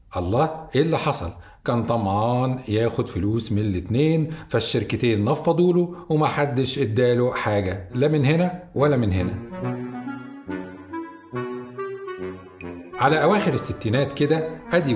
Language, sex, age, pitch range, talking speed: Arabic, male, 40-59, 105-150 Hz, 110 wpm